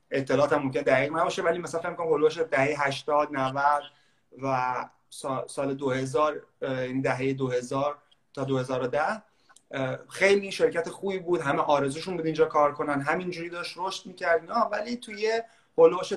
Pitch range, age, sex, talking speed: 140-190 Hz, 30-49, male, 135 wpm